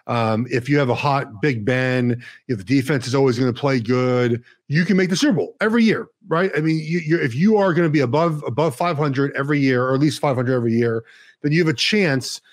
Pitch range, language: 130-180 Hz, English